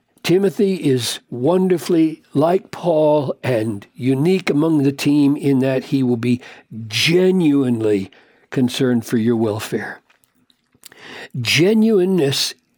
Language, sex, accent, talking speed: English, male, American, 100 wpm